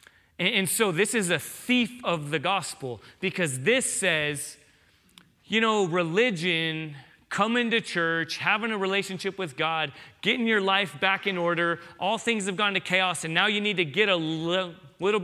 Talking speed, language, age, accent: 170 wpm, English, 30-49, American